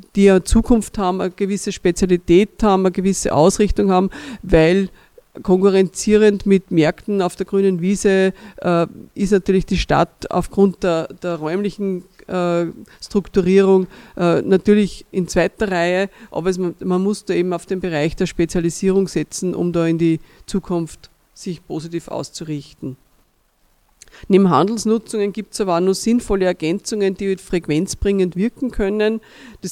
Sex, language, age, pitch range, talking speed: female, German, 50-69, 180-200 Hz, 145 wpm